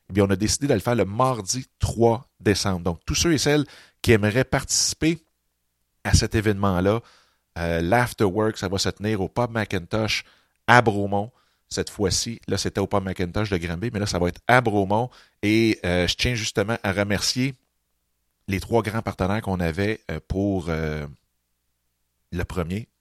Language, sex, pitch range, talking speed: French, male, 90-110 Hz, 175 wpm